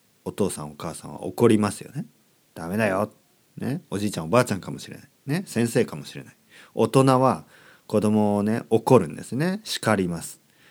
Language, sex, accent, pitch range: Japanese, male, native, 100-155 Hz